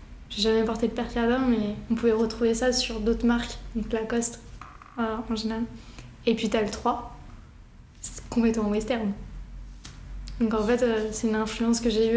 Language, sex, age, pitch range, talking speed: French, female, 20-39, 225-245 Hz, 180 wpm